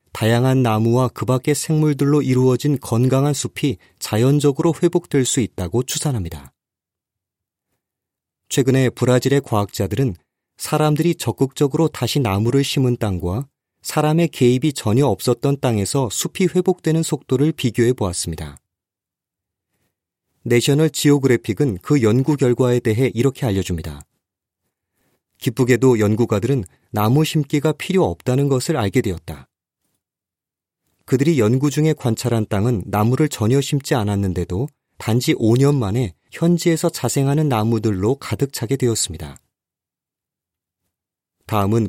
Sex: male